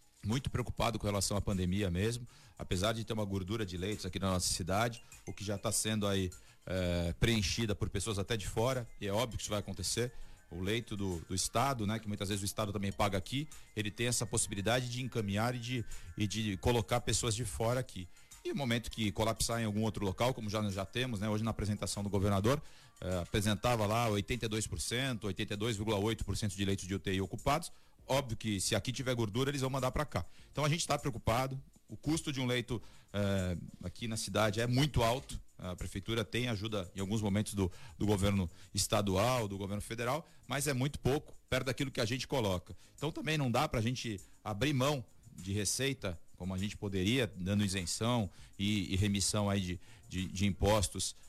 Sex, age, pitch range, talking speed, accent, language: male, 40-59, 100-120 Hz, 200 wpm, Brazilian, Portuguese